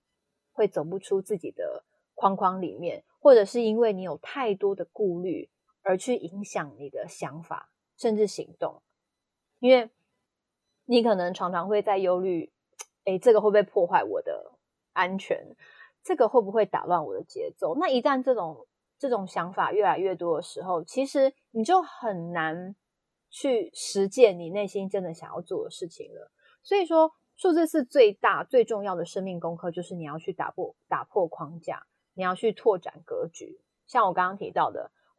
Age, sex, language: 30-49, female, Chinese